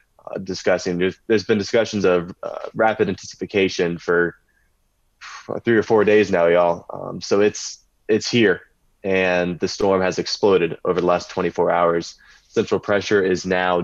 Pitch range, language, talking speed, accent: 90-100 Hz, English, 155 wpm, American